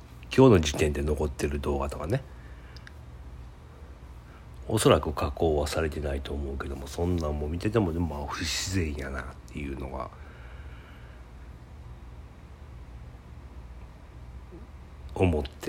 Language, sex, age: Japanese, male, 60-79